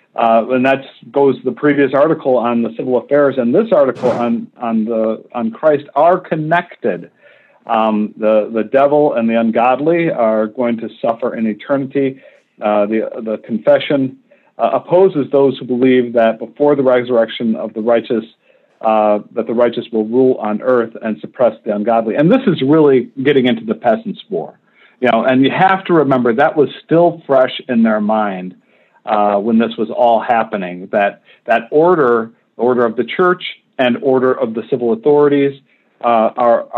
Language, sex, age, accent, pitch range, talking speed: English, male, 50-69, American, 110-135 Hz, 175 wpm